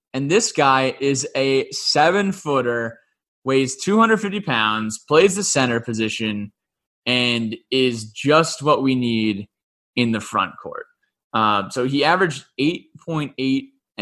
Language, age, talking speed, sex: English, 20-39, 125 wpm, male